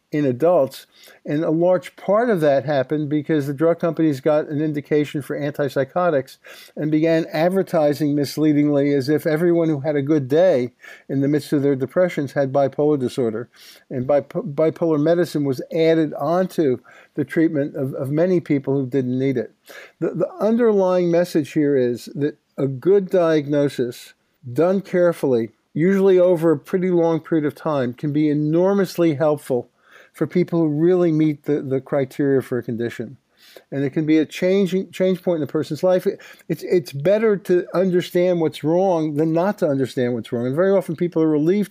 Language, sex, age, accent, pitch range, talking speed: English, male, 50-69, American, 140-175 Hz, 175 wpm